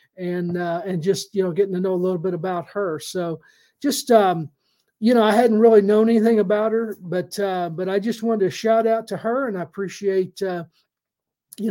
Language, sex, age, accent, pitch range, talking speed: English, male, 40-59, American, 180-225 Hz, 215 wpm